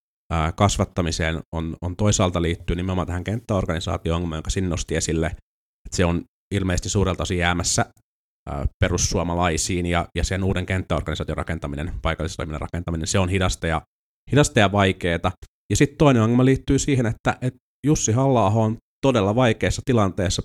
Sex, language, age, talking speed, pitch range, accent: male, Finnish, 30-49, 140 wpm, 90-110 Hz, native